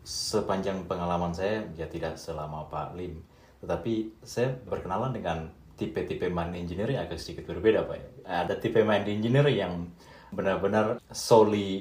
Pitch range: 80-105 Hz